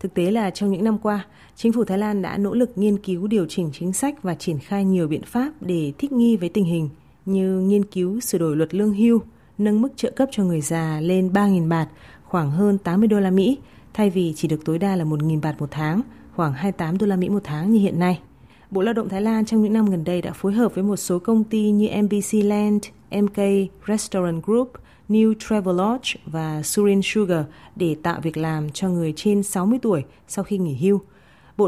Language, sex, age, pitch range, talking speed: Vietnamese, female, 20-39, 170-210 Hz, 225 wpm